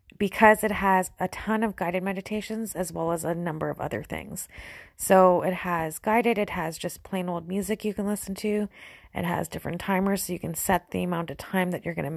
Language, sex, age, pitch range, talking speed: English, female, 30-49, 180-215 Hz, 225 wpm